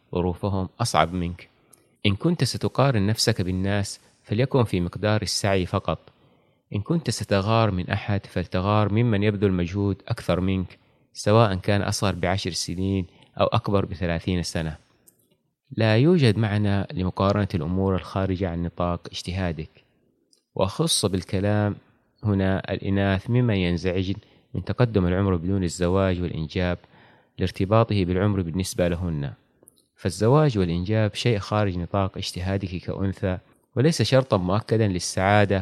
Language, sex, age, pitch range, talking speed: Arabic, male, 30-49, 90-110 Hz, 115 wpm